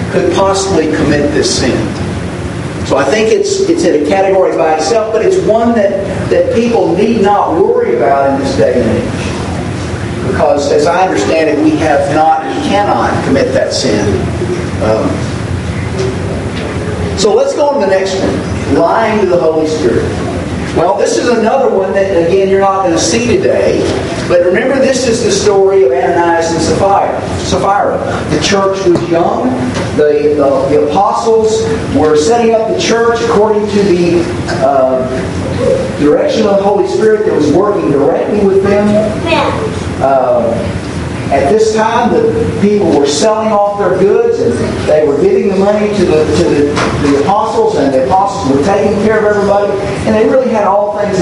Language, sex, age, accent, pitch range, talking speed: English, male, 50-69, American, 150-220 Hz, 170 wpm